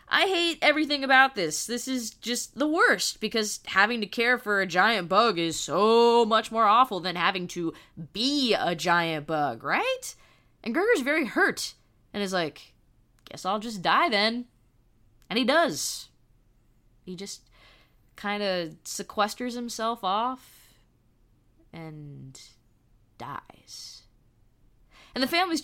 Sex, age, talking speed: female, 20-39, 135 wpm